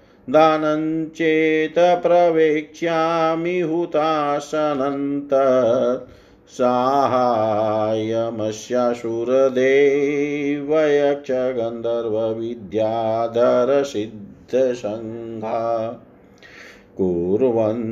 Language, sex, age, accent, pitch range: Hindi, male, 50-69, native, 115-155 Hz